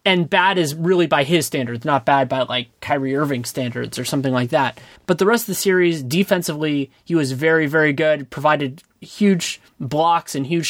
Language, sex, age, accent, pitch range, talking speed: English, male, 20-39, American, 140-180 Hz, 195 wpm